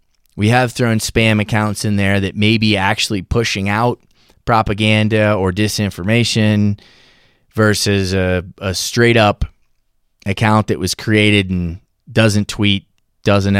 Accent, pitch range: American, 95-125 Hz